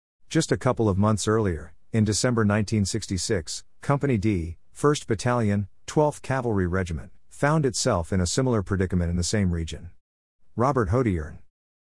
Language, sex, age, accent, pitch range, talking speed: English, male, 50-69, American, 90-115 Hz, 140 wpm